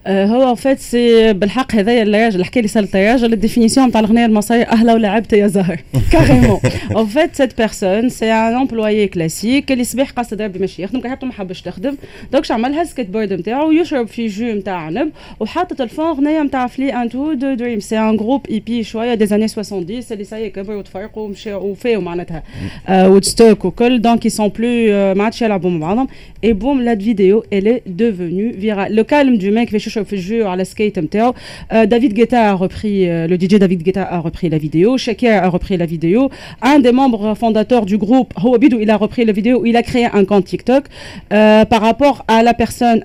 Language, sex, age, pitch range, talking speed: Arabic, female, 30-49, 200-245 Hz, 190 wpm